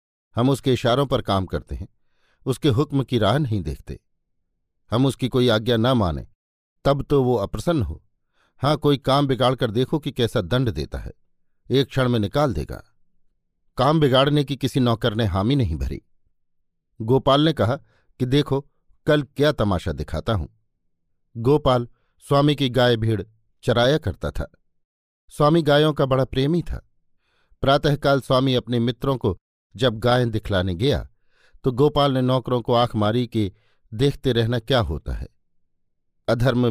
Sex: male